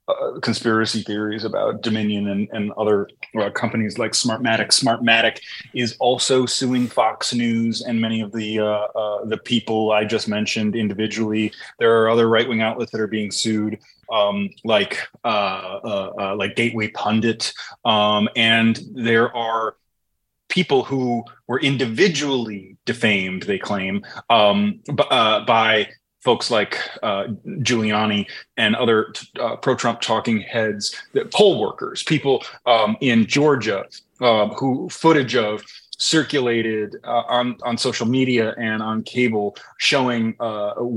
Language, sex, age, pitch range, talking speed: English, male, 20-39, 110-125 Hz, 140 wpm